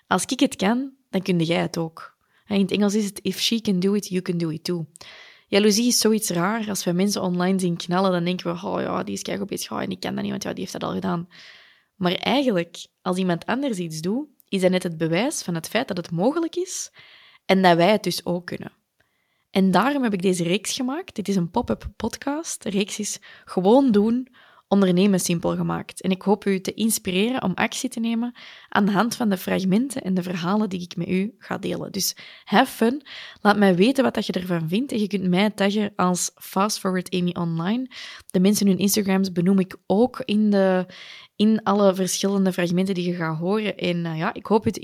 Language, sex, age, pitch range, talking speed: Dutch, female, 20-39, 180-215 Hz, 230 wpm